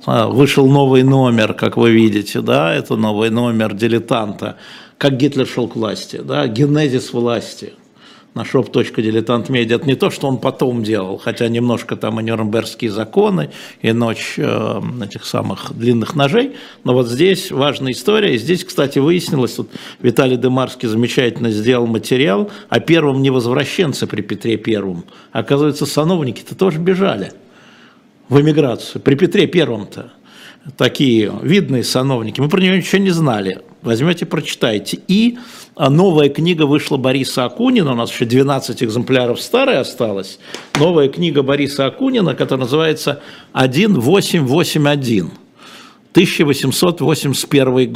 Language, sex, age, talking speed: Russian, male, 50-69, 130 wpm